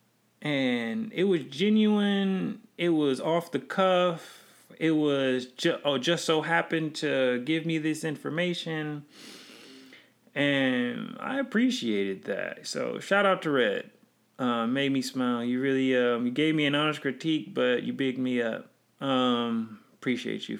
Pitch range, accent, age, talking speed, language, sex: 130-175 Hz, American, 30-49, 150 wpm, English, male